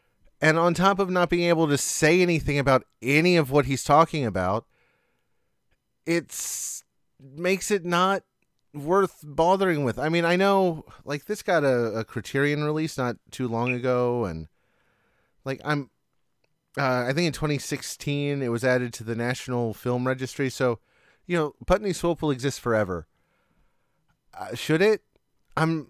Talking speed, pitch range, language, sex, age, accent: 155 wpm, 130-165 Hz, English, male, 30-49, American